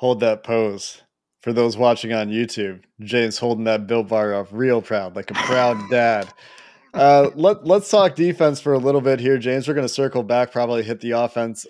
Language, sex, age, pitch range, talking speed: English, male, 20-39, 115-130 Hz, 205 wpm